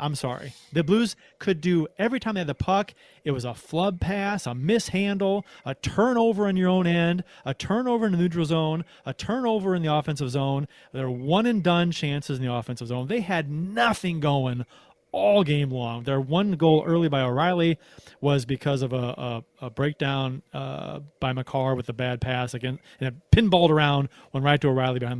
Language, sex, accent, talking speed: English, male, American, 195 wpm